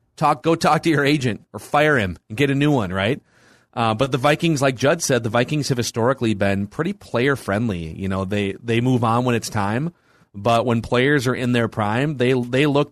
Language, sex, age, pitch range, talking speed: English, male, 30-49, 105-140 Hz, 225 wpm